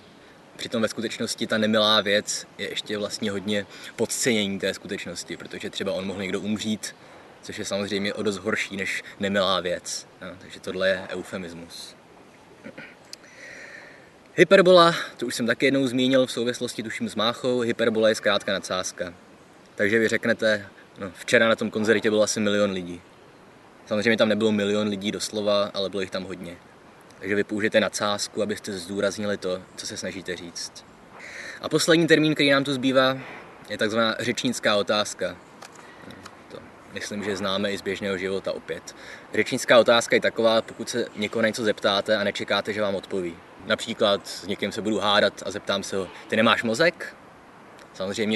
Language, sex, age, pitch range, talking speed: Czech, male, 20-39, 100-120 Hz, 165 wpm